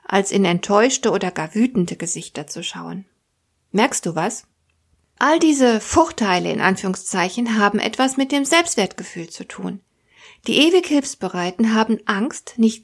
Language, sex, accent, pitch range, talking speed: German, female, German, 195-265 Hz, 140 wpm